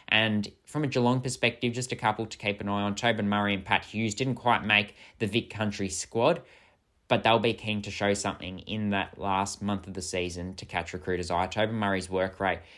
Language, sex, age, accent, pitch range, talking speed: English, male, 10-29, Australian, 90-105 Hz, 220 wpm